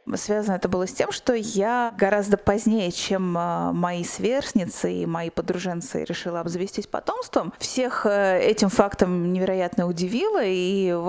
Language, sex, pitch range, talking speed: Russian, female, 180-220 Hz, 135 wpm